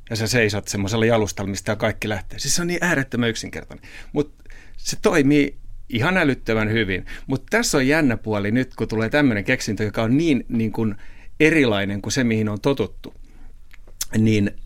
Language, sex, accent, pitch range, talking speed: Finnish, male, native, 100-125 Hz, 170 wpm